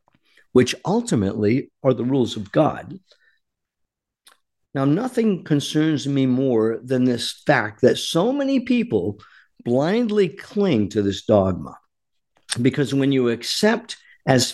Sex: male